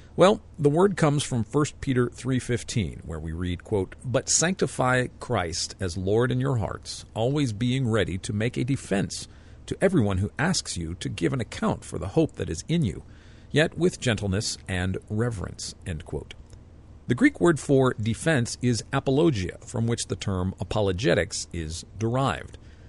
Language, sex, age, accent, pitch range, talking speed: English, male, 50-69, American, 90-130 Hz, 160 wpm